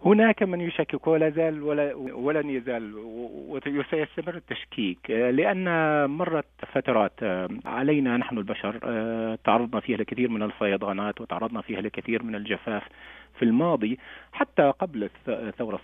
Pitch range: 105-145 Hz